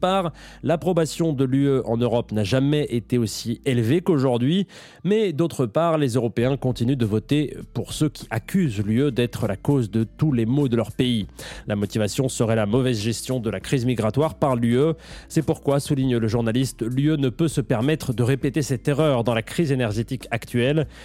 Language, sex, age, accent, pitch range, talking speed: French, male, 30-49, French, 115-145 Hz, 185 wpm